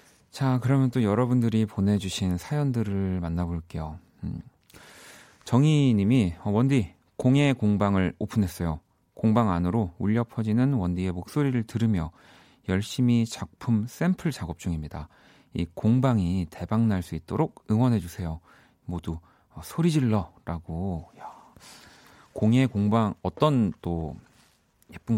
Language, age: Korean, 40-59